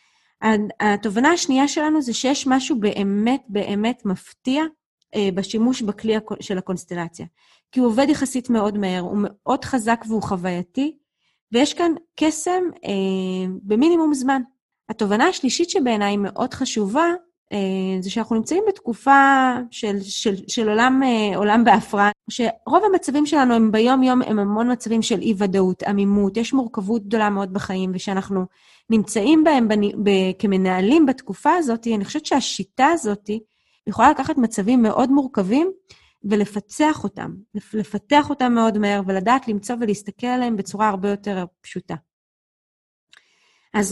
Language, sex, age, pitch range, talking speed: Hebrew, female, 20-39, 200-265 Hz, 130 wpm